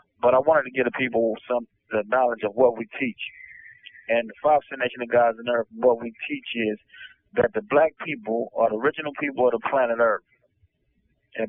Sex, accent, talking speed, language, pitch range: male, American, 200 wpm, English, 120-145 Hz